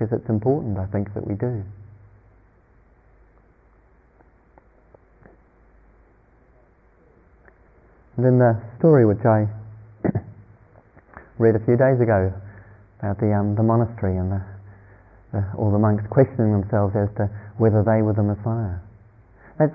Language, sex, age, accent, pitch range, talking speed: English, male, 40-59, British, 100-130 Hz, 120 wpm